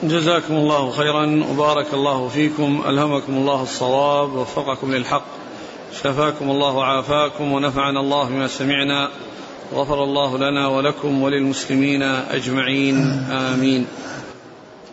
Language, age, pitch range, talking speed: Arabic, 40-59, 140-160 Hz, 100 wpm